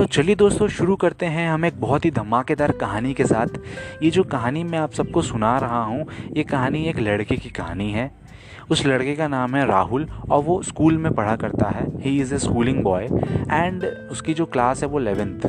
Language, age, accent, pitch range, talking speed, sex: Hindi, 20-39, native, 115-155 Hz, 215 wpm, male